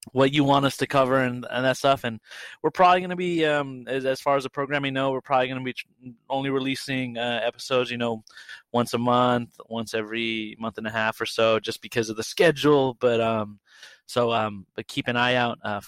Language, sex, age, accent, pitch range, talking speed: English, male, 30-49, American, 115-140 Hz, 235 wpm